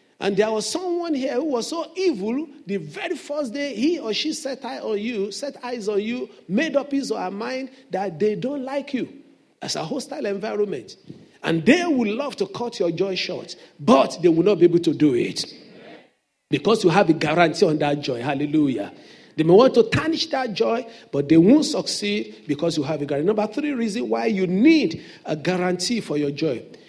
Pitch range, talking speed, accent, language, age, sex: 210-285 Hz, 210 wpm, Nigerian, English, 50-69, male